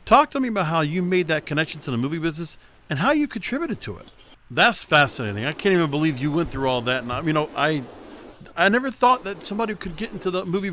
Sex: male